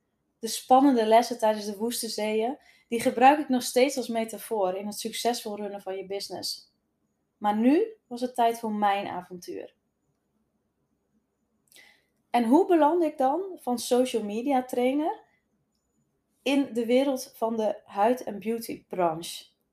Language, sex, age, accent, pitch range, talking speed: Dutch, female, 20-39, Dutch, 210-265 Hz, 140 wpm